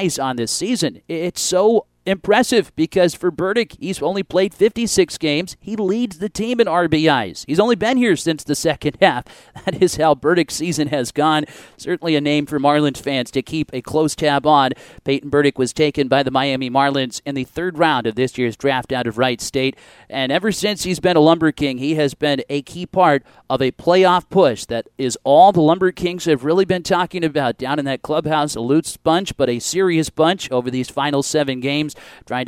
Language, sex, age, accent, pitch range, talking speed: English, male, 40-59, American, 140-170 Hz, 210 wpm